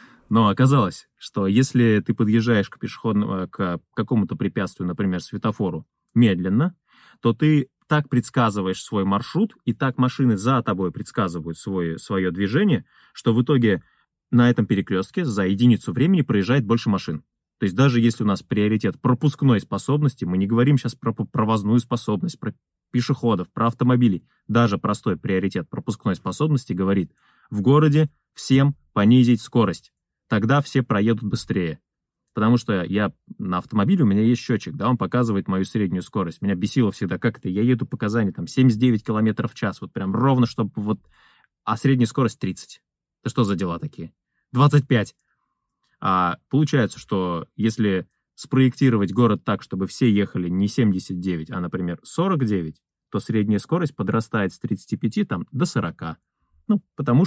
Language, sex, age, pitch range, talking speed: Russian, male, 20-39, 100-130 Hz, 150 wpm